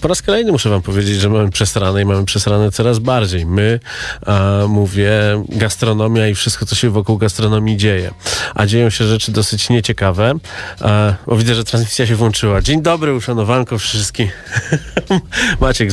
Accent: native